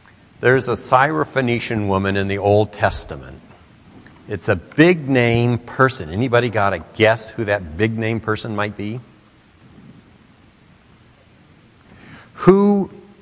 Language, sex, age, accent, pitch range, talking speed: English, male, 60-79, American, 95-120 Hz, 105 wpm